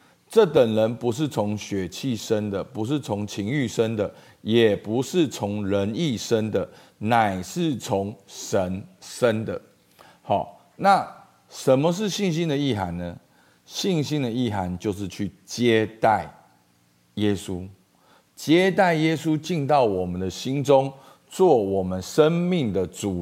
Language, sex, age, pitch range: Chinese, male, 50-69, 95-155 Hz